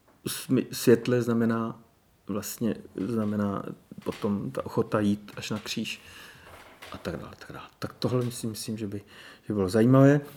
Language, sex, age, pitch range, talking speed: Czech, male, 40-59, 115-140 Hz, 150 wpm